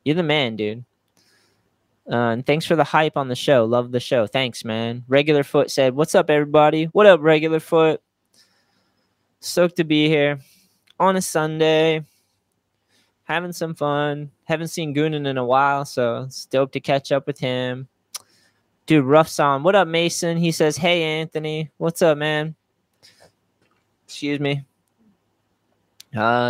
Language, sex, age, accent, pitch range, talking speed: English, male, 20-39, American, 125-155 Hz, 155 wpm